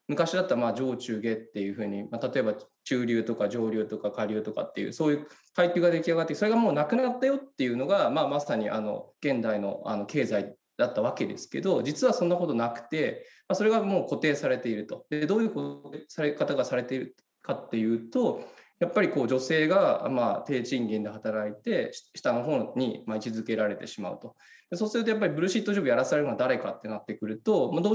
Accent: native